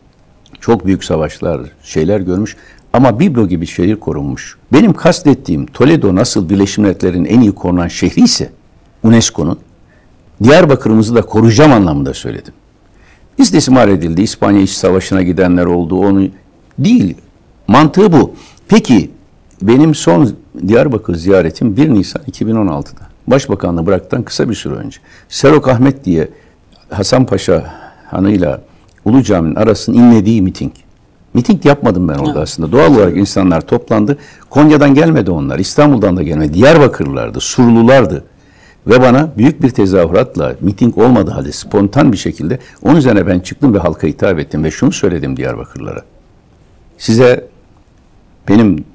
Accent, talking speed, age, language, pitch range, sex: native, 125 wpm, 60-79, Turkish, 90-125 Hz, male